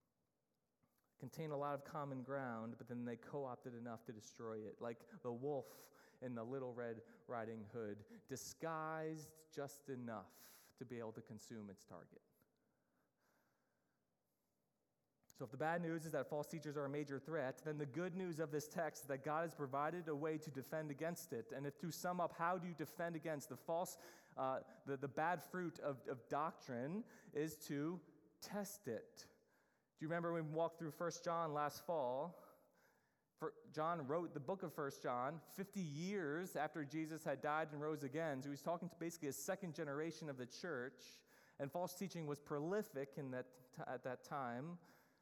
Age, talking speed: 30-49, 185 wpm